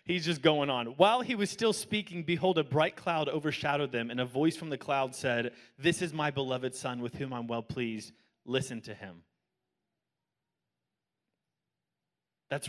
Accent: American